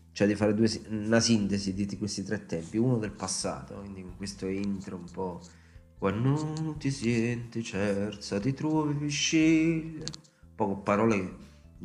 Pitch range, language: 95-115 Hz, Italian